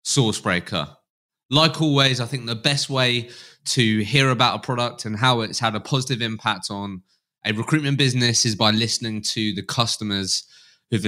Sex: male